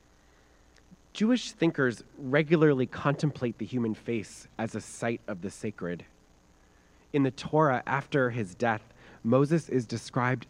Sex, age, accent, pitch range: male, 30-49, American, 105-145 Hz